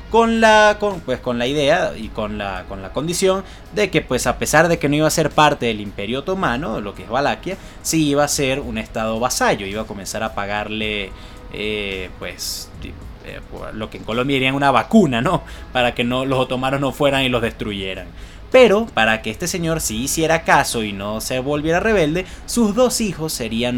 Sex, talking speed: male, 210 wpm